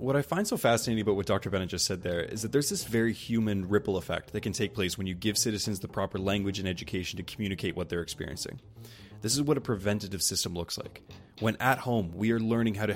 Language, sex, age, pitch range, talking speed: English, male, 20-39, 100-120 Hz, 250 wpm